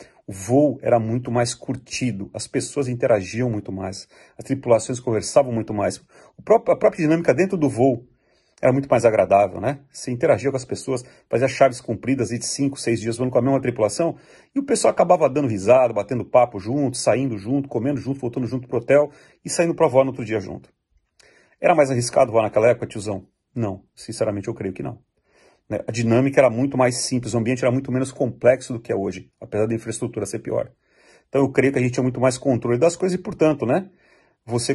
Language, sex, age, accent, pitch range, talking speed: Portuguese, male, 40-59, Brazilian, 115-145 Hz, 205 wpm